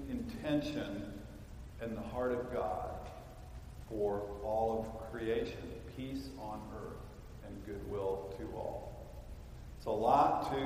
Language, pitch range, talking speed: English, 110-135 Hz, 120 wpm